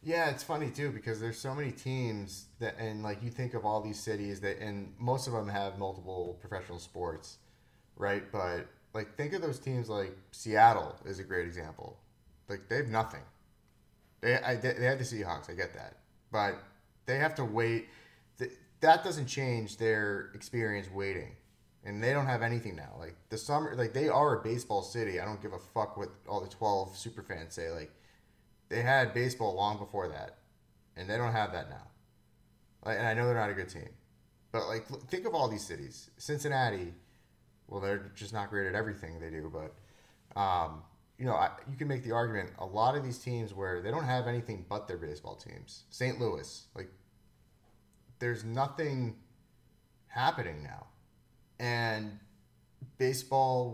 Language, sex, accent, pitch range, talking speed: English, male, American, 100-125 Hz, 180 wpm